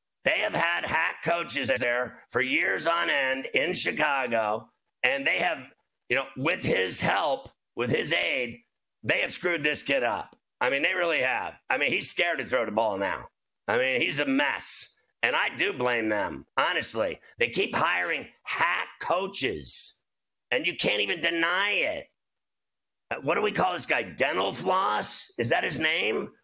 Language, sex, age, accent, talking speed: English, male, 50-69, American, 175 wpm